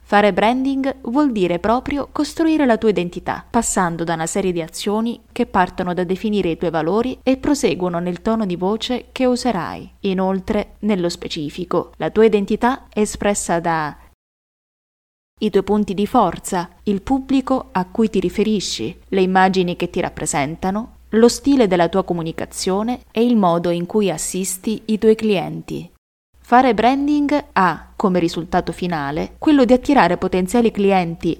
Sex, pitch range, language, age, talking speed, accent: female, 175-230 Hz, Italian, 20-39, 155 wpm, native